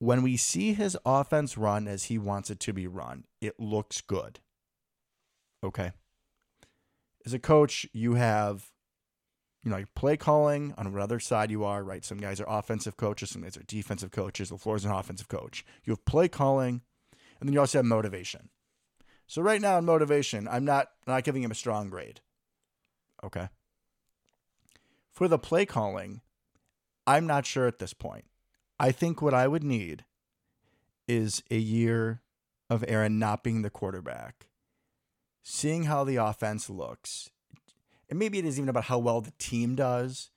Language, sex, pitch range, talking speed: English, male, 105-130 Hz, 170 wpm